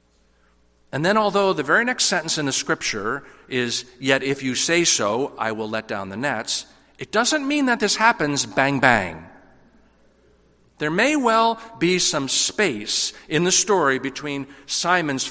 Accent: American